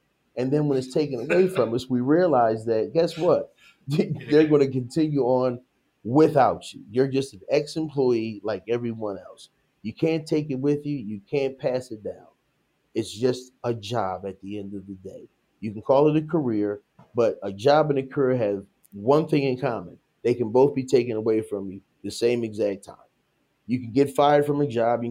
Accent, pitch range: American, 115-145 Hz